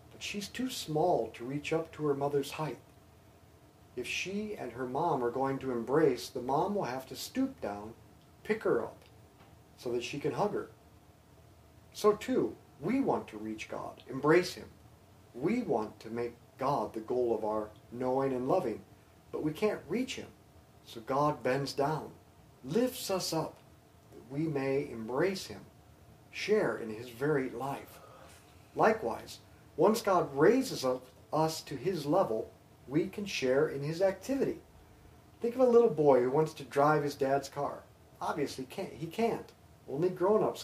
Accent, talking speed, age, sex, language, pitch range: American, 165 wpm, 40-59, male, English, 120-180 Hz